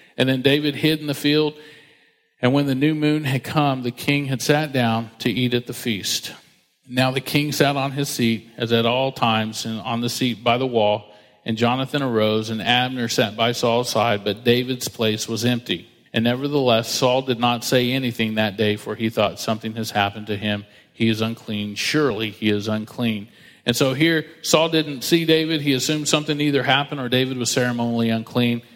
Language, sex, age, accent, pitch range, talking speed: English, male, 40-59, American, 115-135 Hz, 200 wpm